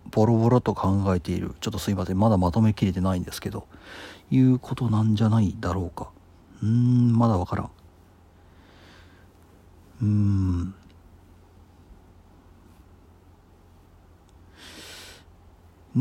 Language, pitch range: Japanese, 90-120 Hz